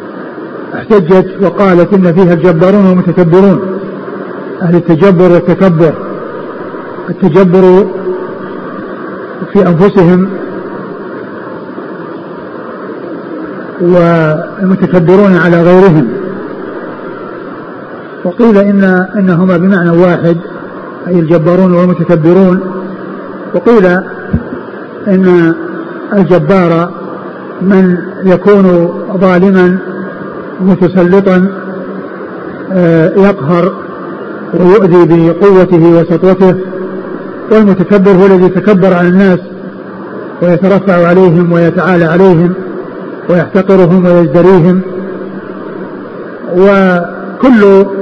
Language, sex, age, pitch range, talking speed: Arabic, male, 50-69, 175-195 Hz, 60 wpm